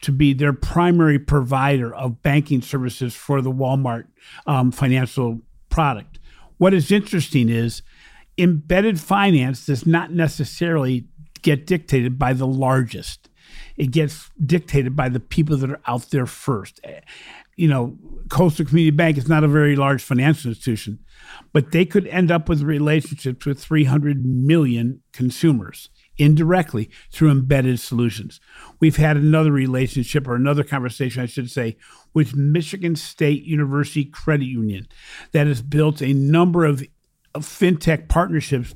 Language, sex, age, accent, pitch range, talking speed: English, male, 50-69, American, 130-160 Hz, 140 wpm